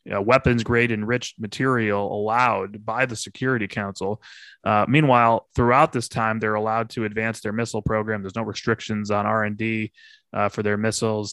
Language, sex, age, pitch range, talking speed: English, male, 20-39, 110-125 Hz, 150 wpm